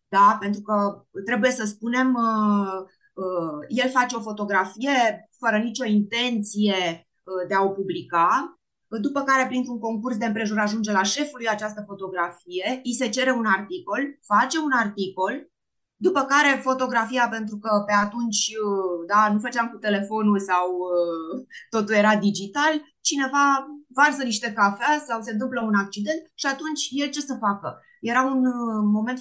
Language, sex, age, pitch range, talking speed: Romanian, female, 20-39, 200-255 Hz, 145 wpm